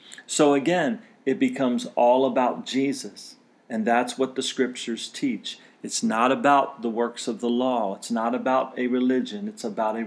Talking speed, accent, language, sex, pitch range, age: 175 wpm, American, English, male, 120-145 Hz, 40-59